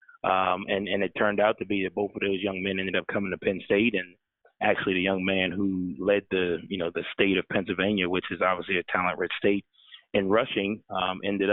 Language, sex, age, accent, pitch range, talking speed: English, male, 30-49, American, 90-105 Hz, 230 wpm